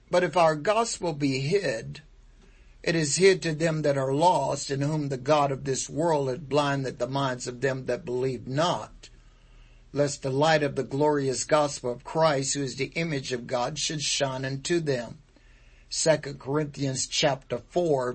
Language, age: English, 60-79